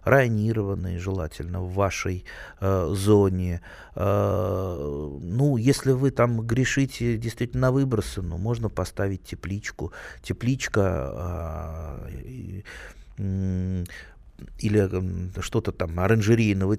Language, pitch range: Russian, 95-130 Hz